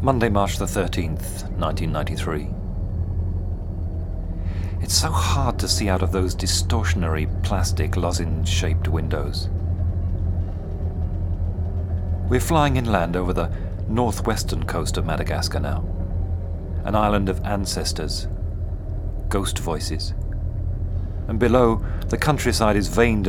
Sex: male